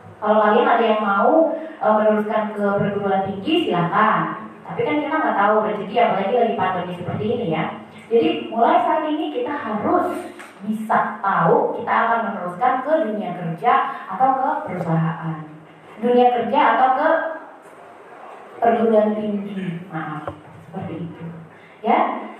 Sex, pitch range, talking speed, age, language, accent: female, 210-295 Hz, 135 wpm, 20-39, Indonesian, native